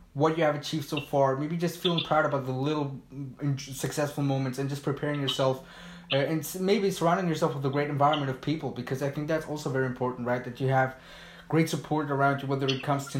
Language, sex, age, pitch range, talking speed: English, male, 20-39, 140-165 Hz, 225 wpm